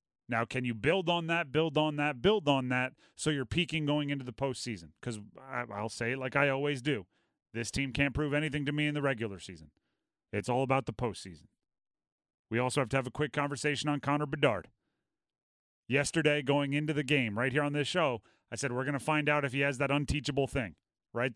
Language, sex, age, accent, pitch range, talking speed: English, male, 30-49, American, 130-160 Hz, 220 wpm